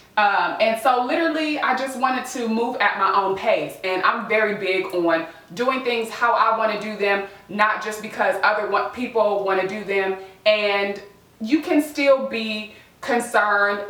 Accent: American